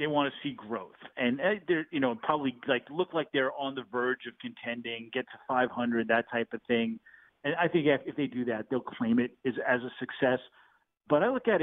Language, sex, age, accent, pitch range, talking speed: English, male, 40-59, American, 125-165 Hz, 225 wpm